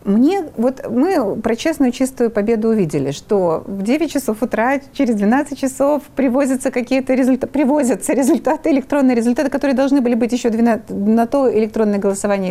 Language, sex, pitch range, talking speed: Russian, female, 200-280 Hz, 160 wpm